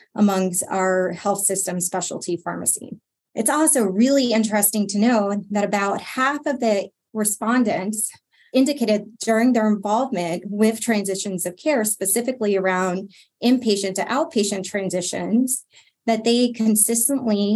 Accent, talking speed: American, 120 wpm